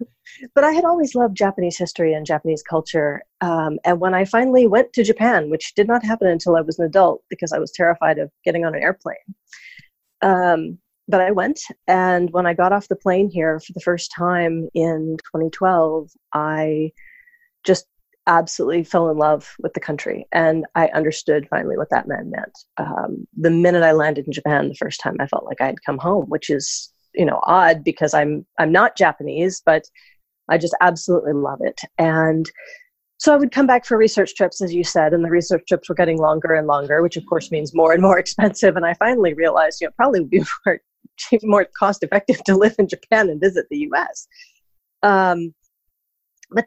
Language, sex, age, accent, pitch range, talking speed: English, female, 30-49, American, 160-220 Hz, 200 wpm